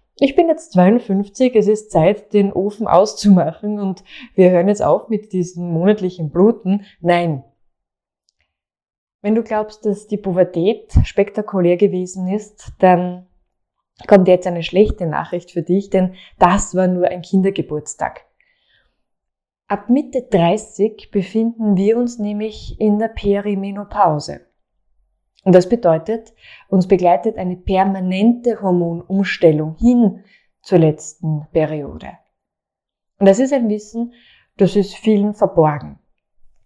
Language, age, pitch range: German, 20-39, 175-210 Hz